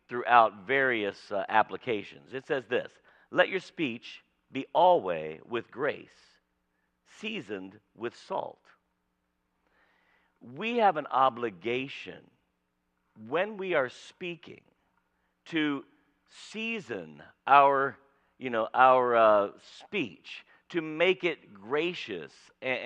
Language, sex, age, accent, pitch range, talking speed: English, male, 50-69, American, 105-155 Hz, 100 wpm